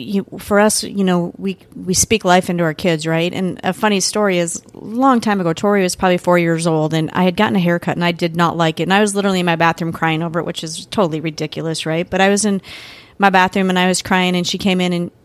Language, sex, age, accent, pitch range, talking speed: English, female, 30-49, American, 180-220 Hz, 275 wpm